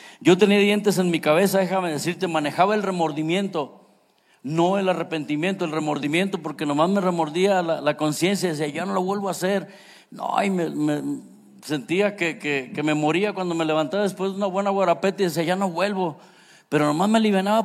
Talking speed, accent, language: 195 wpm, Mexican, Spanish